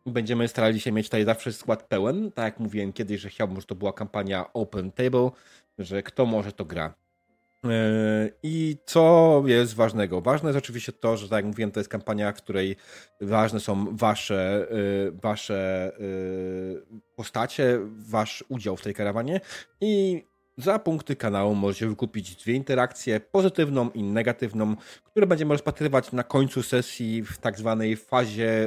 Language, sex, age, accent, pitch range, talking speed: Polish, male, 30-49, native, 105-125 Hz, 155 wpm